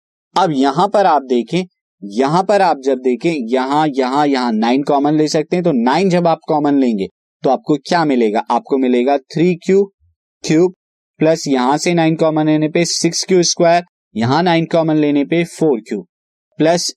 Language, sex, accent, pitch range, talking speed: Hindi, male, native, 135-180 Hz, 175 wpm